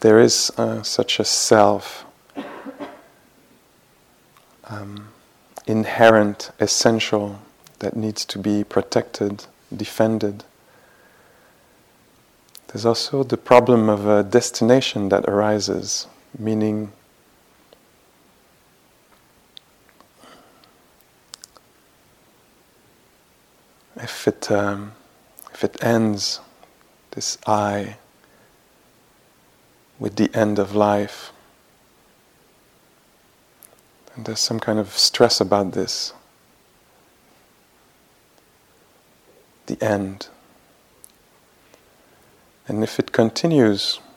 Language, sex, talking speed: English, male, 70 wpm